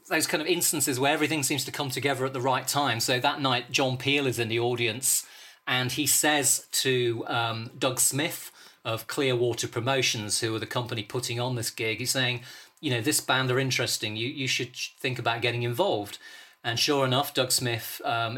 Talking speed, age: 200 wpm, 40-59